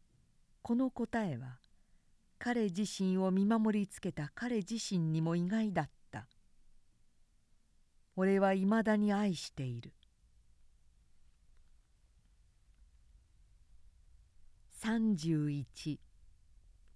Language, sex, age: Japanese, female, 50-69